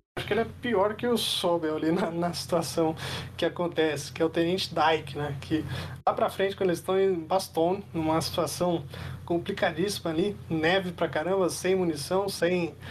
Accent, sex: Brazilian, male